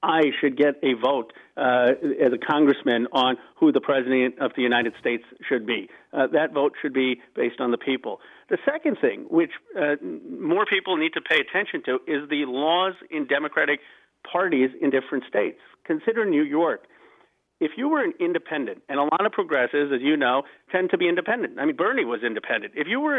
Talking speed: 200 wpm